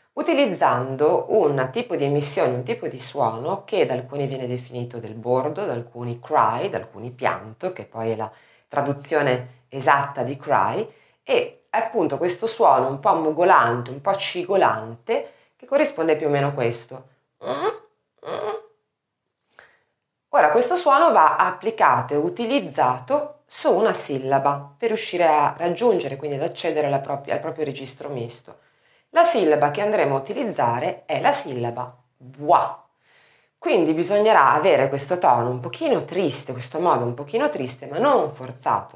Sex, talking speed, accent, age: female, 150 wpm, native, 30-49